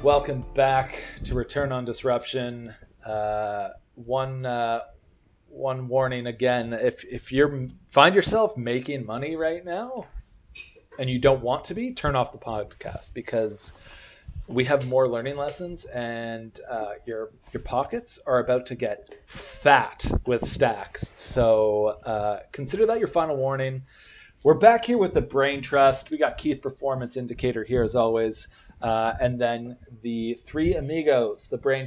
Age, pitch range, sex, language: 30-49, 115-140 Hz, male, English